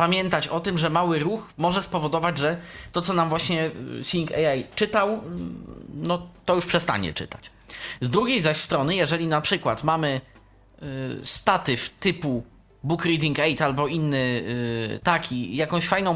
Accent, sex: native, male